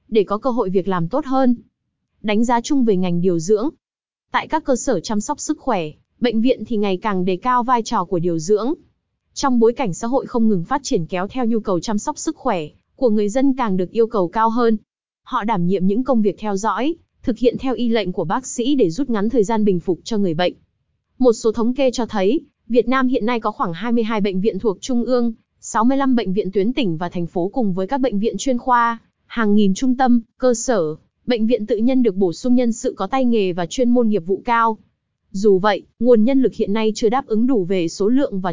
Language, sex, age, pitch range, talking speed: Vietnamese, female, 20-39, 200-250 Hz, 250 wpm